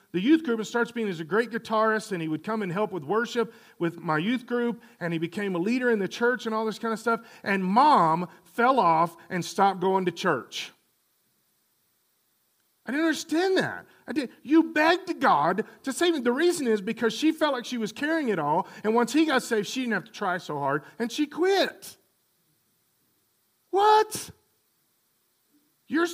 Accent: American